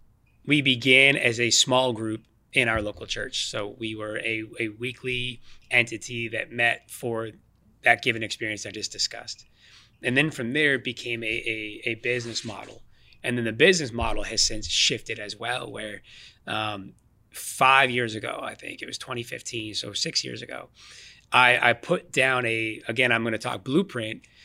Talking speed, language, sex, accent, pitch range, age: 175 wpm, English, male, American, 110-130 Hz, 20-39